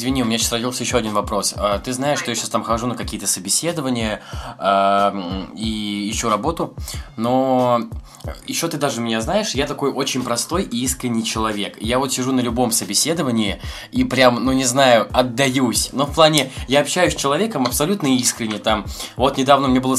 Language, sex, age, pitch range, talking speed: Russian, male, 20-39, 115-140 Hz, 185 wpm